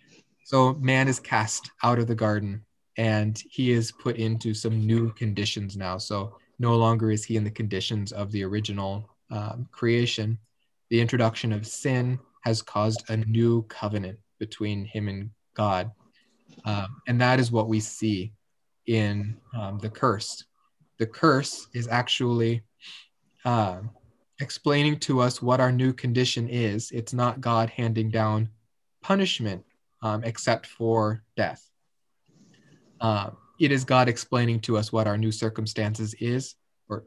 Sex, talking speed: male, 145 wpm